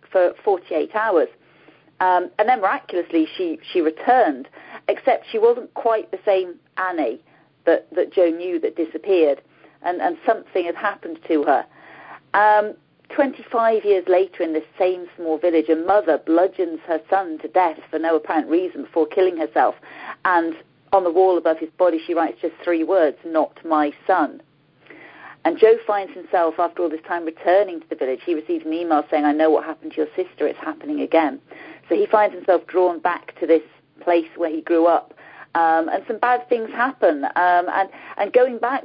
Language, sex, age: English, female, 40-59